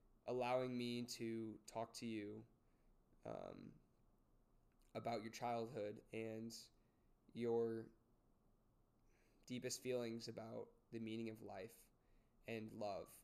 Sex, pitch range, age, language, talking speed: male, 110-125 Hz, 20-39, English, 95 wpm